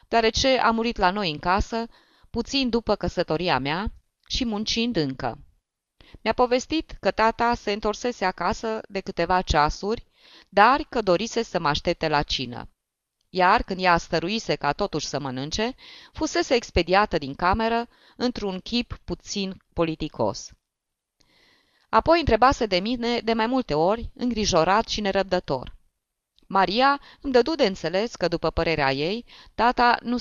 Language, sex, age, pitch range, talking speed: Romanian, female, 20-39, 165-230 Hz, 140 wpm